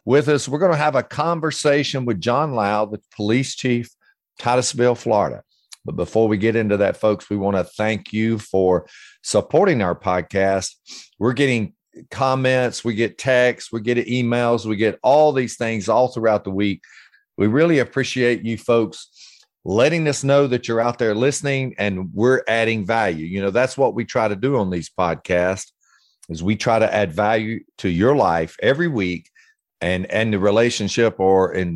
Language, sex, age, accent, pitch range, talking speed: English, male, 50-69, American, 100-125 Hz, 180 wpm